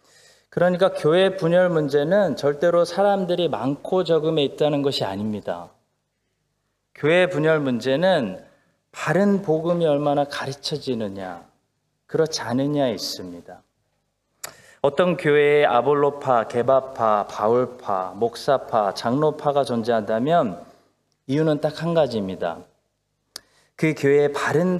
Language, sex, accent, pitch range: Korean, male, native, 130-170 Hz